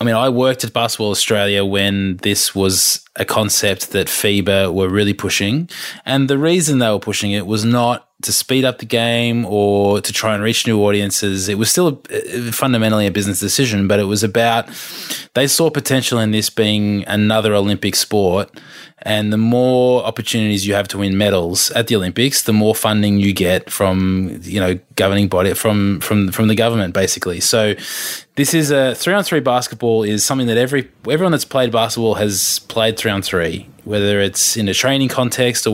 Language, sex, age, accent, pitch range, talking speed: English, male, 20-39, Australian, 100-120 Hz, 190 wpm